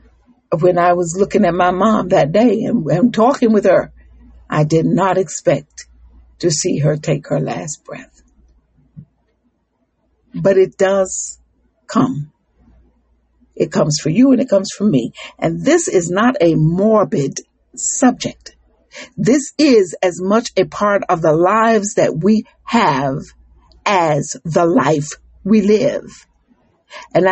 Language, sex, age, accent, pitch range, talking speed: English, female, 60-79, American, 165-225 Hz, 140 wpm